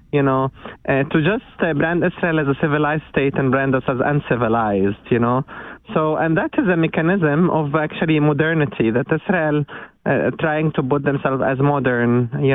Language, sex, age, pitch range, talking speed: German, male, 20-39, 125-155 Hz, 180 wpm